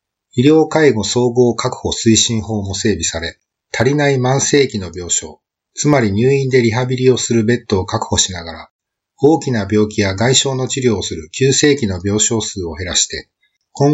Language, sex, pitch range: Japanese, male, 100-130 Hz